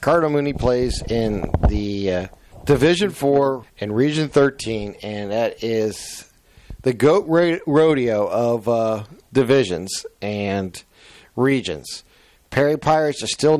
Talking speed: 115 wpm